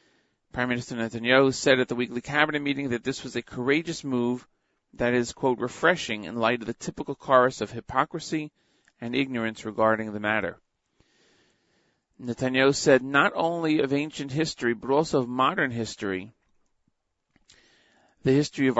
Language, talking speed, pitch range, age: English, 150 wpm, 115-145 Hz, 40-59